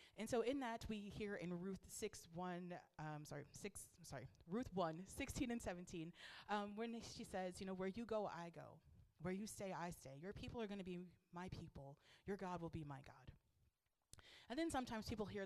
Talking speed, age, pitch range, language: 210 wpm, 30-49, 160-220 Hz, English